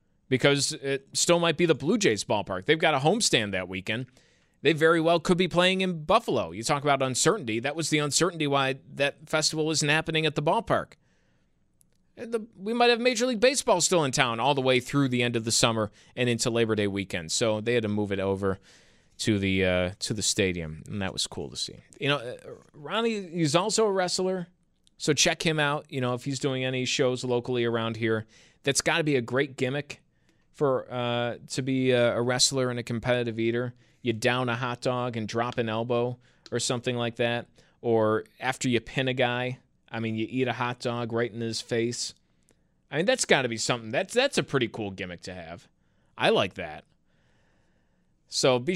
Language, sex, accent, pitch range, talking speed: English, male, American, 110-150 Hz, 210 wpm